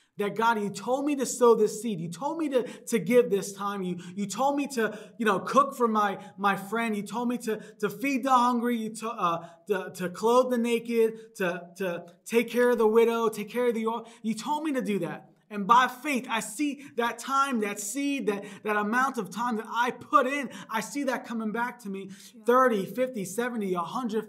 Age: 20-39